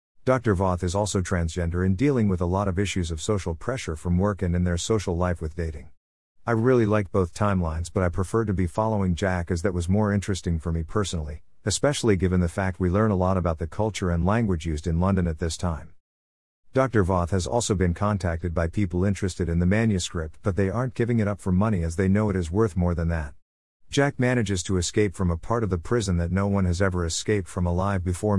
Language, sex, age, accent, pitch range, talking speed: English, male, 50-69, American, 85-105 Hz, 235 wpm